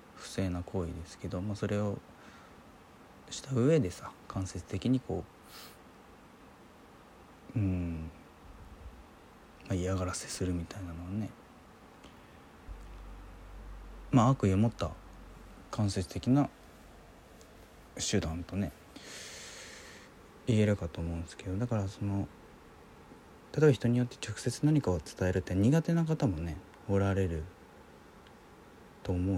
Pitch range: 85-105 Hz